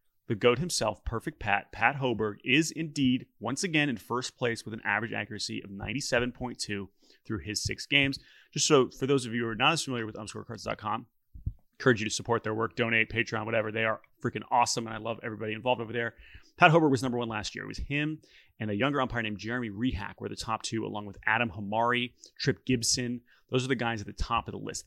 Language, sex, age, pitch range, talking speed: English, male, 30-49, 110-130 Hz, 225 wpm